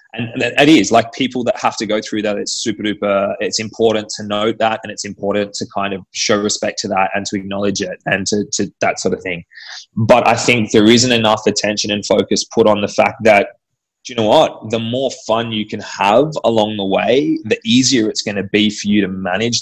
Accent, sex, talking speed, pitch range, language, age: Australian, male, 235 wpm, 100-115 Hz, English, 20-39